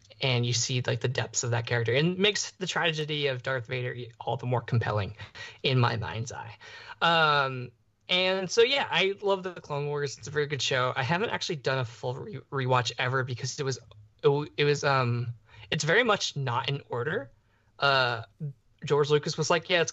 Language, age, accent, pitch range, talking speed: English, 20-39, American, 120-145 Hz, 210 wpm